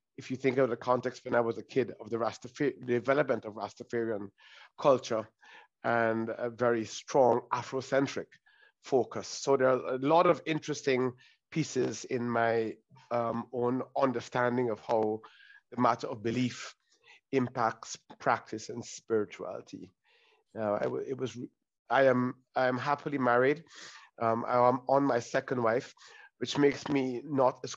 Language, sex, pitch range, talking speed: English, male, 115-135 Hz, 150 wpm